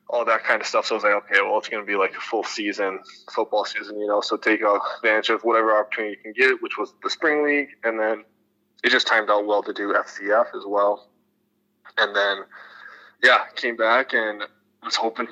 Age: 20-39